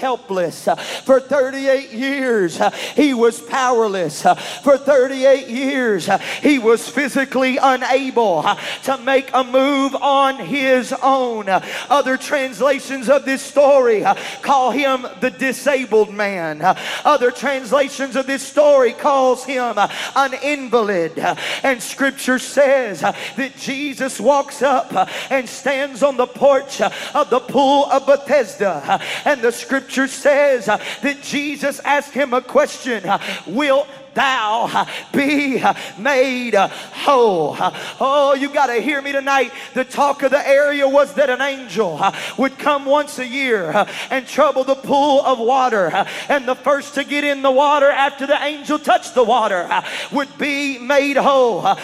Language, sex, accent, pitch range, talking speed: English, male, American, 250-280 Hz, 135 wpm